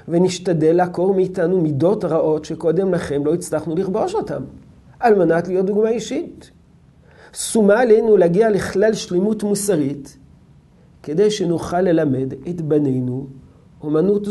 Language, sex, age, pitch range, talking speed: Hebrew, male, 50-69, 150-205 Hz, 115 wpm